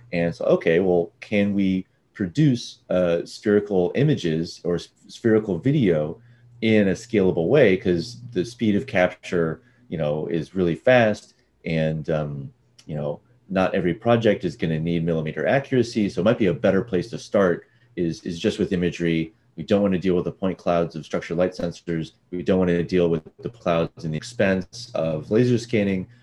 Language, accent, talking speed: English, American, 185 wpm